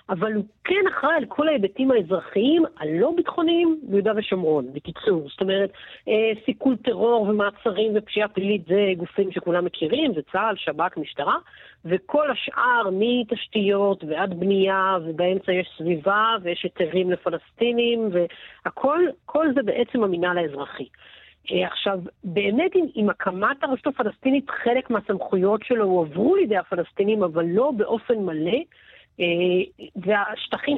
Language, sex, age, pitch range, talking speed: Hebrew, female, 40-59, 180-240 Hz, 125 wpm